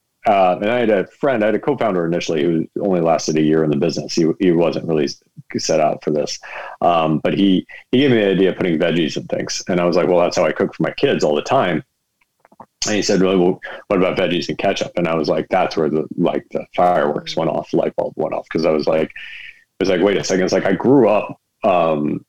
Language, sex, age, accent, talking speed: English, male, 40-59, American, 260 wpm